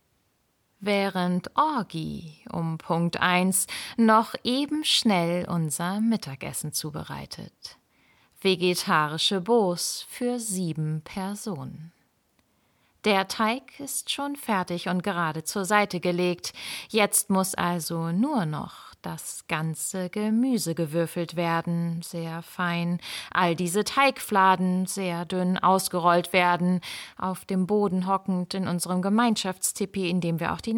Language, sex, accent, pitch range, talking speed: German, female, German, 175-220 Hz, 110 wpm